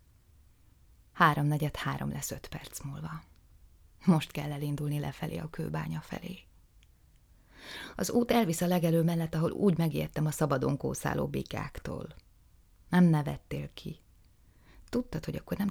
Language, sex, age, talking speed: Hungarian, female, 30-49, 125 wpm